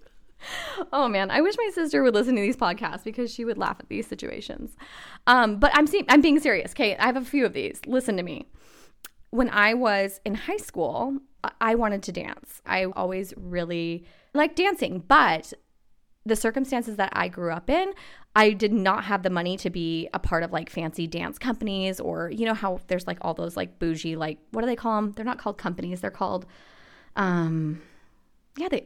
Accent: American